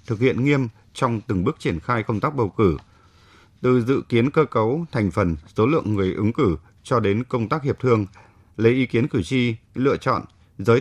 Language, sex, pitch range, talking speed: Vietnamese, male, 95-130 Hz, 210 wpm